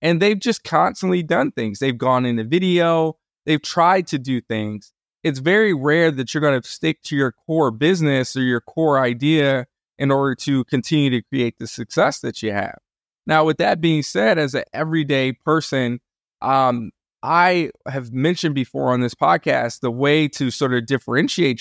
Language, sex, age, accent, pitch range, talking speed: English, male, 20-39, American, 130-170 Hz, 180 wpm